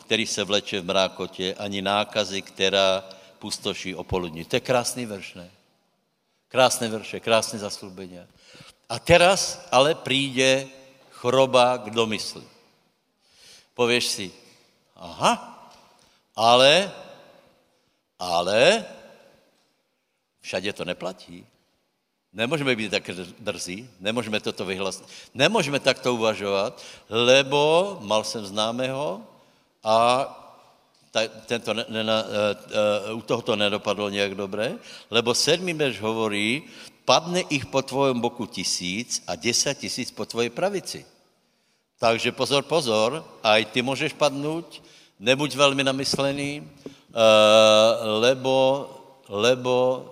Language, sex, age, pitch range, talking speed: Slovak, male, 70-89, 105-135 Hz, 100 wpm